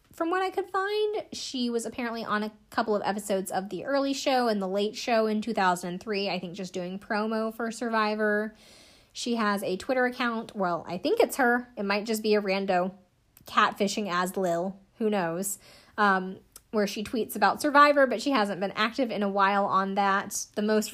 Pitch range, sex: 190-230 Hz, female